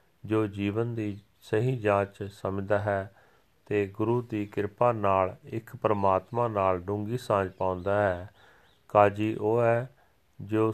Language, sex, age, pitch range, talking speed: Punjabi, male, 40-59, 95-110 Hz, 130 wpm